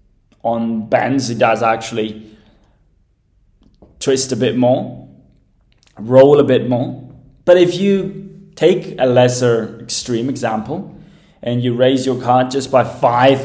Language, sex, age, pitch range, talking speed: English, male, 20-39, 115-145 Hz, 130 wpm